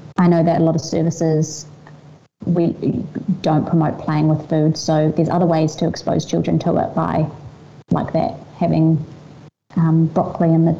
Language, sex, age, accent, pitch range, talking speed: English, female, 30-49, Australian, 160-180 Hz, 165 wpm